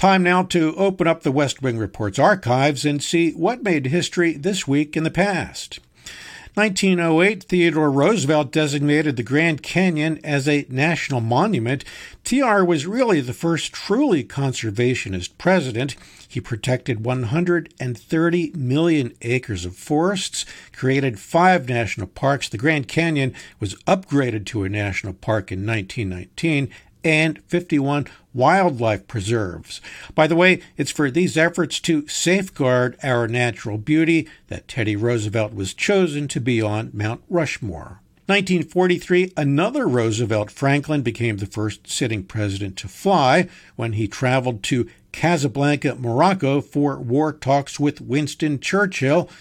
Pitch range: 115-165 Hz